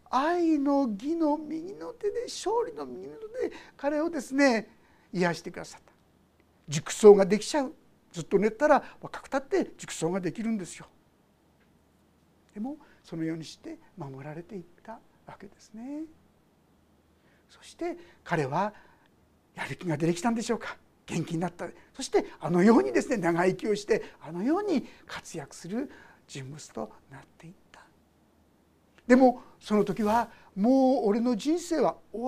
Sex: male